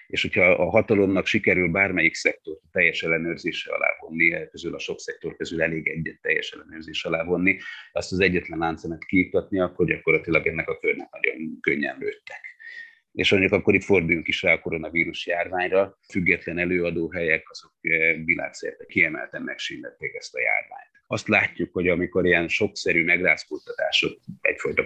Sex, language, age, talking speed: male, Hungarian, 30-49, 150 wpm